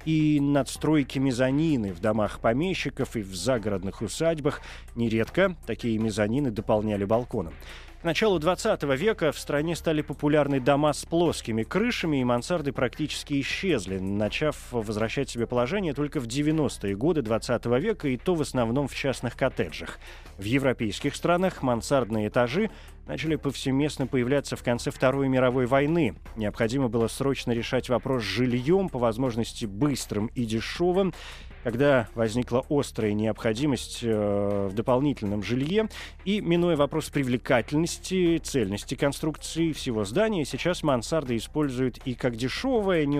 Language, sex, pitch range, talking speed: Russian, male, 110-150 Hz, 135 wpm